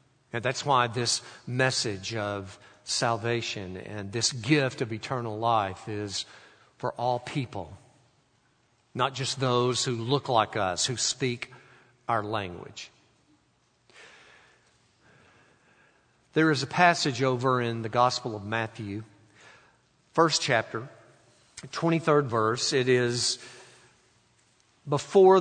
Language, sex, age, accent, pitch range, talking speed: English, male, 50-69, American, 115-140 Hz, 105 wpm